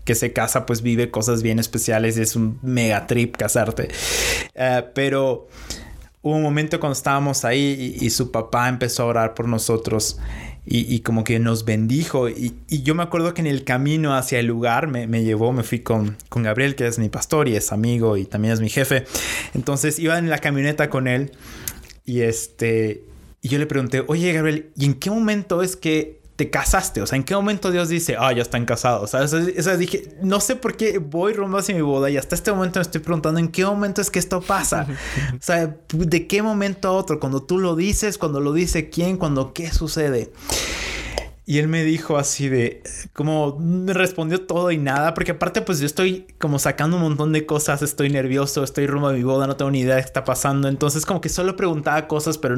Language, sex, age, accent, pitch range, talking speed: Spanish, male, 20-39, Mexican, 120-165 Hz, 220 wpm